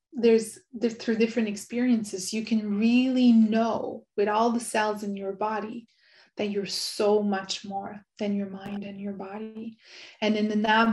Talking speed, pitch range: 165 wpm, 200-225 Hz